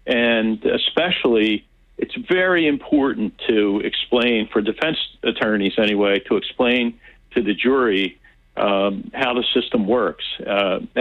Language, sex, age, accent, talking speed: English, male, 50-69, American, 120 wpm